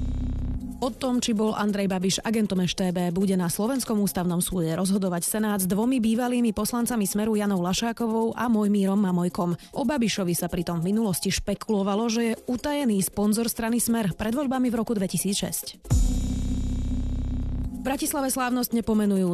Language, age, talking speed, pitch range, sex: Czech, 20-39, 145 wpm, 185-230 Hz, female